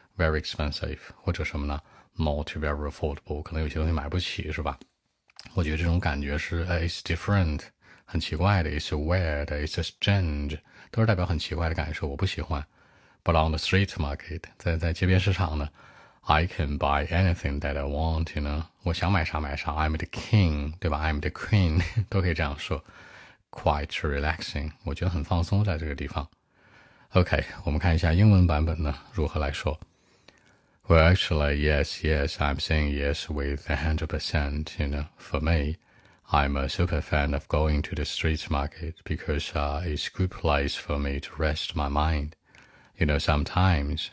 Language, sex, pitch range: Chinese, male, 75-85 Hz